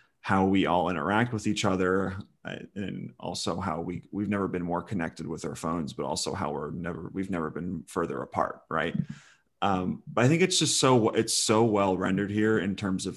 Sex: male